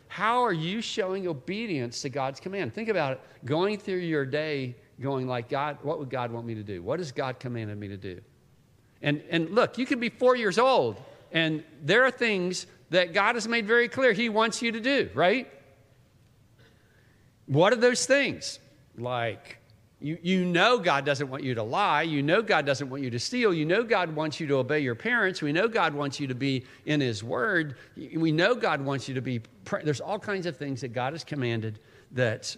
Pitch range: 120-160 Hz